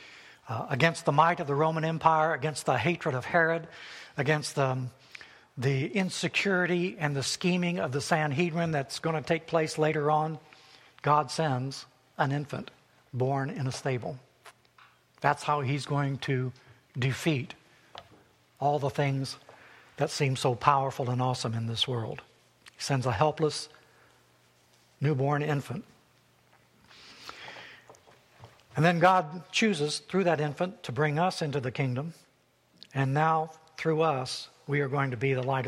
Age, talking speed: 60-79, 145 wpm